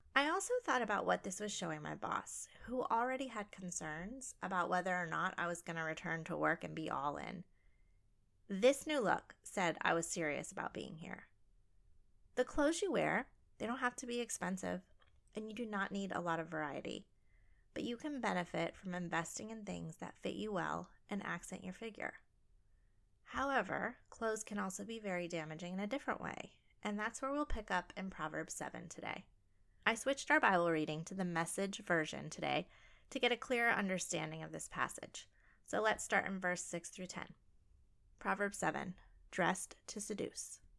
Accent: American